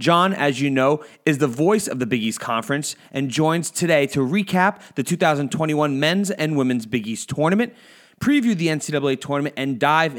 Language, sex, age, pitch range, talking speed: English, male, 30-49, 125-160 Hz, 185 wpm